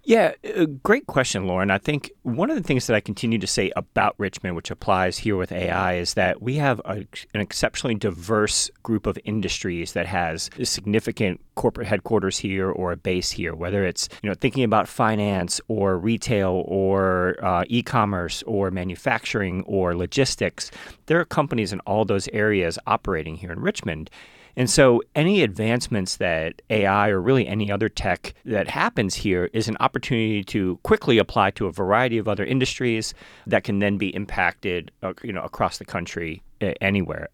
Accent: American